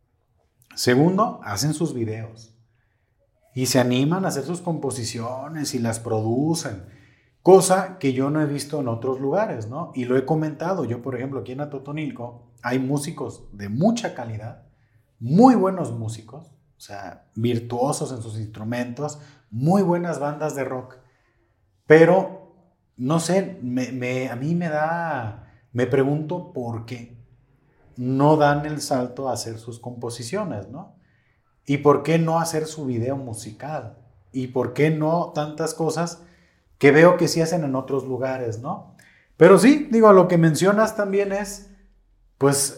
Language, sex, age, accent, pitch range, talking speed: Spanish, male, 30-49, Mexican, 120-165 Hz, 150 wpm